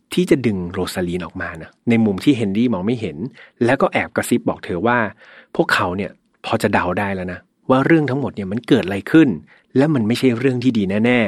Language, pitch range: Thai, 105-145 Hz